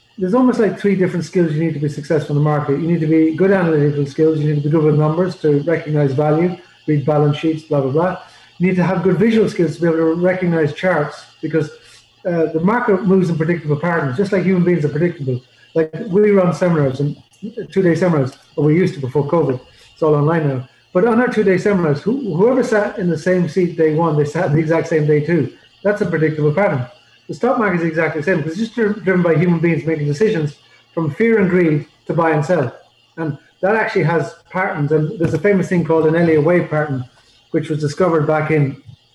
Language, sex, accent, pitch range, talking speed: English, male, Irish, 150-180 Hz, 230 wpm